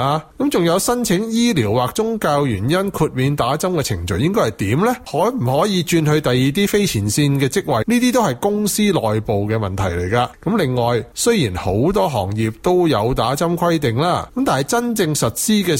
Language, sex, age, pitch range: Chinese, male, 30-49, 115-180 Hz